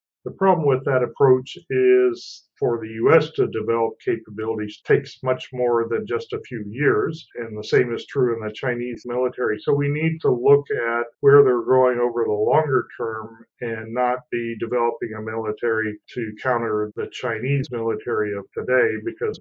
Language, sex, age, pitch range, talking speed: English, male, 50-69, 115-140 Hz, 175 wpm